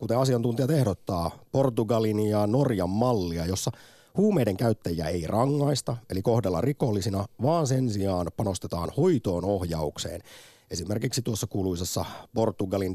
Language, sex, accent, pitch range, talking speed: Finnish, male, native, 95-125 Hz, 115 wpm